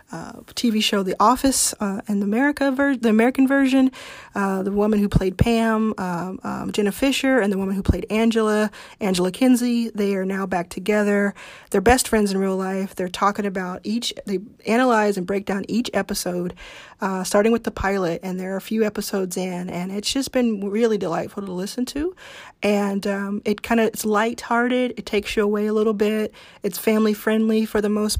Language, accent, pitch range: English, American, 195-220 Hz